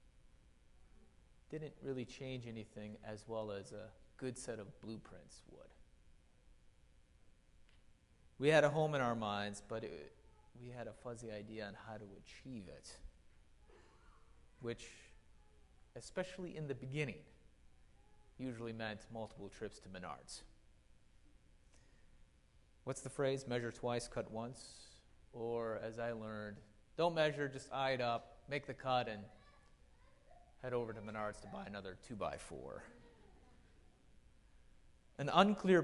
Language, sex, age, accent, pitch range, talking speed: English, male, 30-49, American, 100-130 Hz, 120 wpm